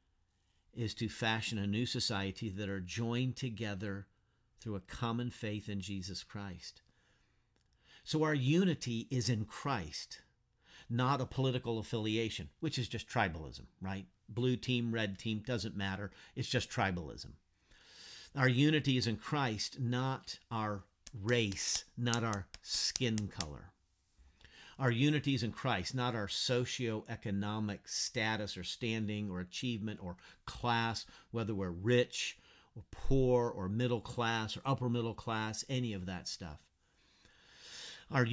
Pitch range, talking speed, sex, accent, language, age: 100-125 Hz, 135 wpm, male, American, English, 50-69